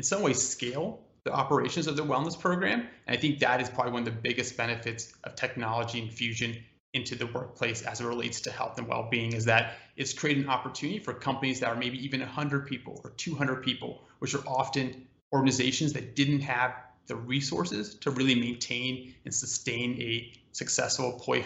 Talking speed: 190 wpm